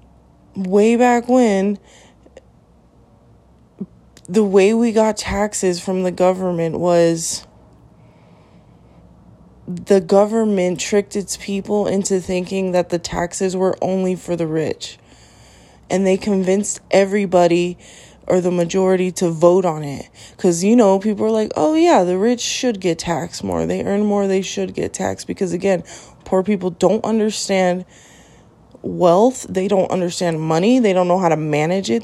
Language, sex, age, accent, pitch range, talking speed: English, female, 20-39, American, 175-200 Hz, 145 wpm